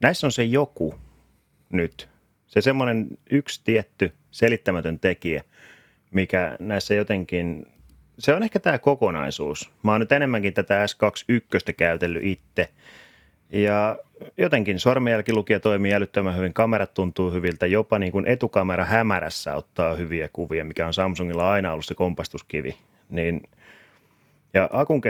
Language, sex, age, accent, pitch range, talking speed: Finnish, male, 30-49, native, 85-110 Hz, 125 wpm